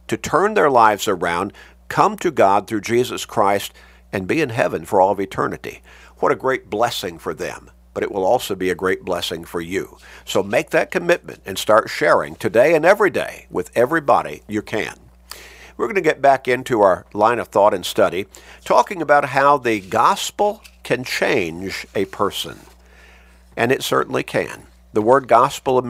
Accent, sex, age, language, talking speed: American, male, 50-69, English, 180 wpm